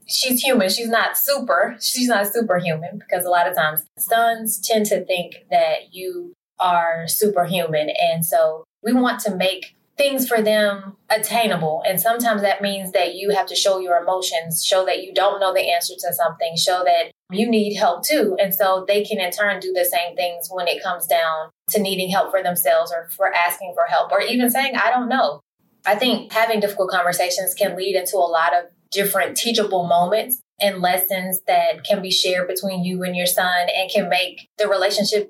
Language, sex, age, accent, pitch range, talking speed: English, female, 20-39, American, 180-230 Hz, 200 wpm